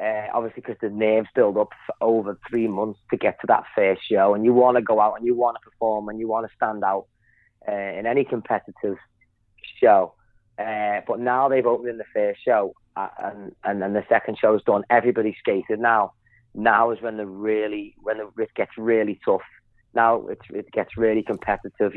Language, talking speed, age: English, 205 wpm, 30-49